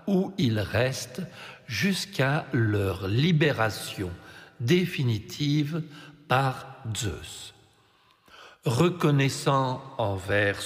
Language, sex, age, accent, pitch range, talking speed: French, male, 60-79, French, 115-155 Hz, 60 wpm